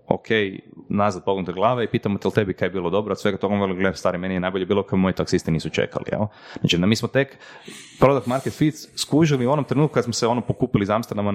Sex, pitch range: male, 90-125 Hz